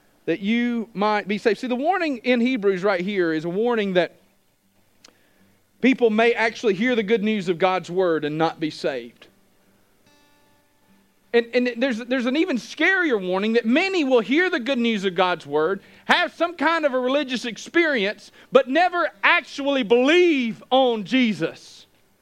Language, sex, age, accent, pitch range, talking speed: English, male, 40-59, American, 220-305 Hz, 165 wpm